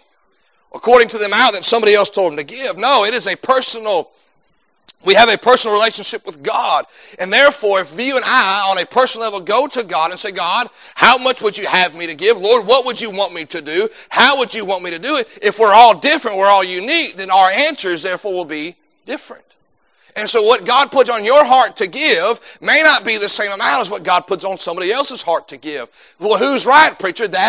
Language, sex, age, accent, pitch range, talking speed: English, male, 30-49, American, 195-280 Hz, 235 wpm